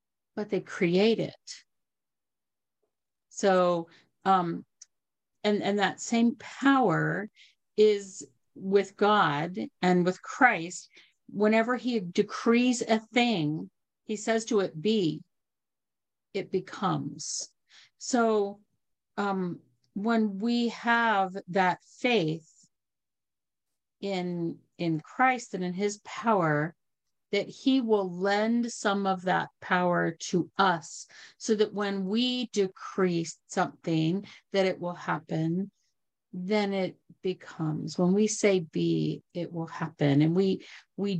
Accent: American